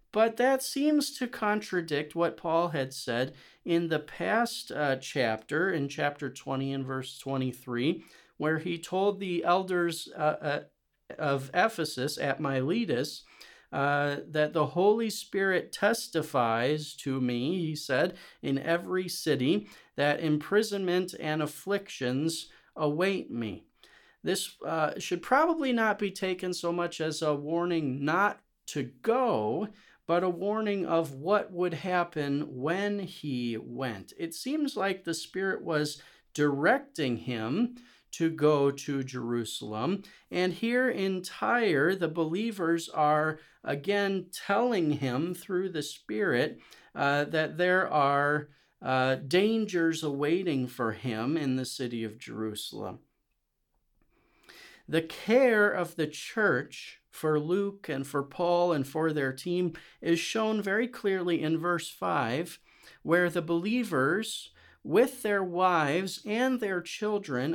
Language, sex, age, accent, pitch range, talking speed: English, male, 40-59, American, 140-190 Hz, 130 wpm